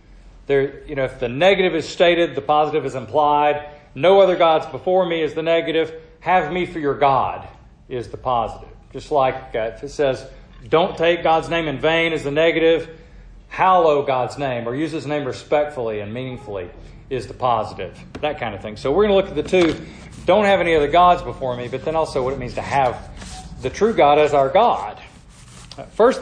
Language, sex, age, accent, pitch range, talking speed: English, male, 40-59, American, 130-175 Hz, 205 wpm